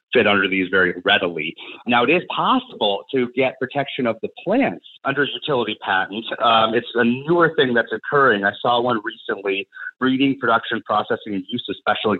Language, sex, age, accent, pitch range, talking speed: English, male, 30-49, American, 115-180 Hz, 180 wpm